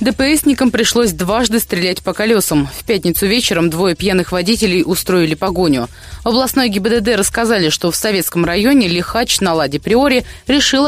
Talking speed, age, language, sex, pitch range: 150 wpm, 20-39, Russian, female, 180-240 Hz